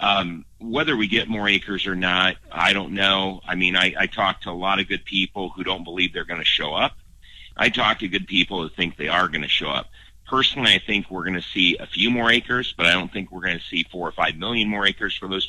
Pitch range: 90-110 Hz